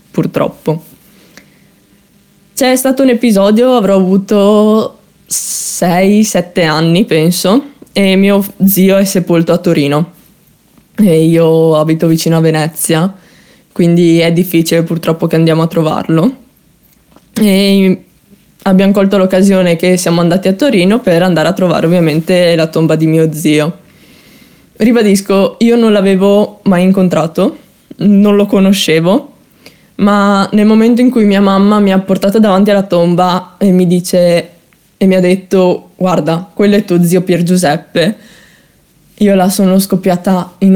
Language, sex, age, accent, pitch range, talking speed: Italian, female, 20-39, native, 170-200 Hz, 135 wpm